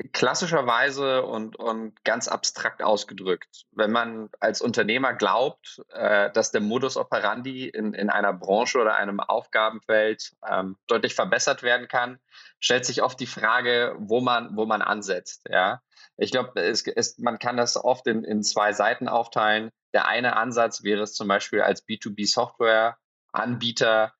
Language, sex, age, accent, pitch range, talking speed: German, male, 20-39, German, 105-120 Hz, 140 wpm